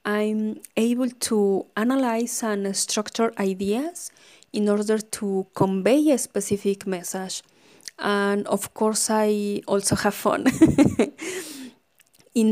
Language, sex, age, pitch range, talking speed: English, female, 20-39, 195-245 Hz, 105 wpm